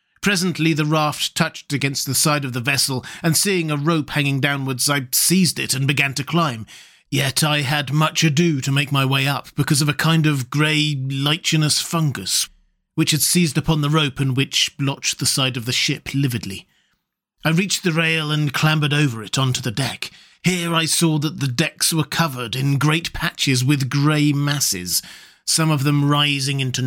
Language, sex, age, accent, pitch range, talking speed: English, male, 40-59, British, 130-155 Hz, 190 wpm